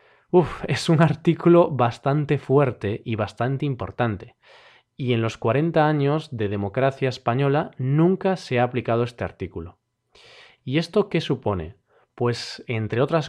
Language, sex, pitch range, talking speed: Spanish, male, 115-155 Hz, 135 wpm